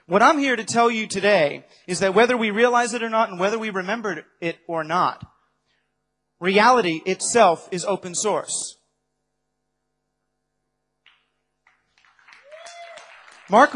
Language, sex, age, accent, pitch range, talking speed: English, male, 30-49, American, 195-250 Hz, 120 wpm